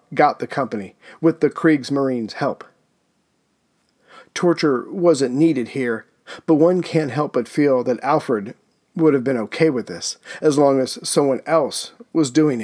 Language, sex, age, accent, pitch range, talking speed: English, male, 40-59, American, 135-160 Hz, 150 wpm